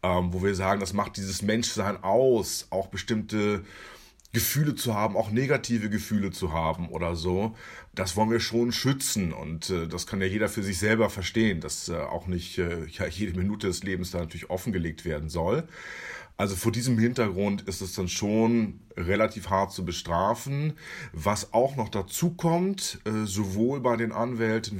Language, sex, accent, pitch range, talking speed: German, male, German, 95-120 Hz, 160 wpm